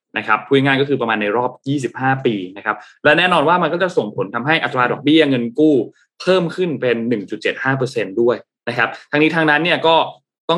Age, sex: 20-39, male